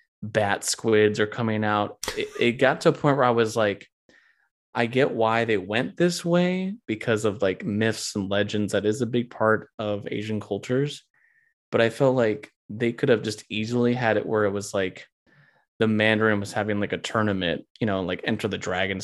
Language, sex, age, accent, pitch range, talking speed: English, male, 20-39, American, 105-125 Hz, 200 wpm